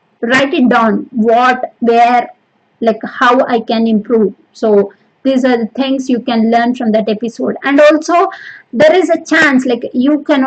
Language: Telugu